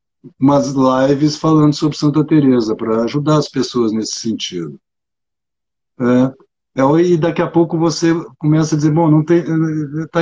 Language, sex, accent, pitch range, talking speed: Portuguese, male, Brazilian, 120-150 Hz, 135 wpm